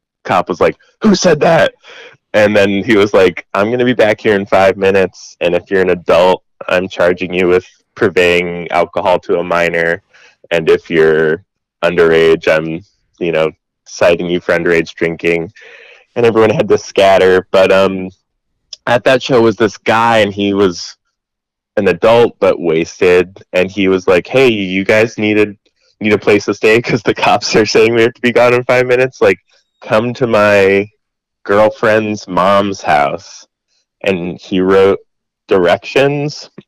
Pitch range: 90-110 Hz